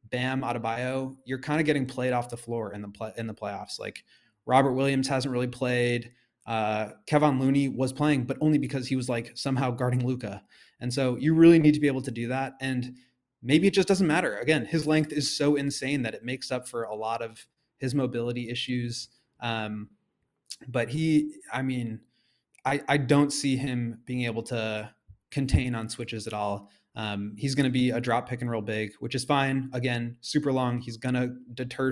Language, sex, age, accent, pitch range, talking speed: English, male, 20-39, American, 115-135 Hz, 205 wpm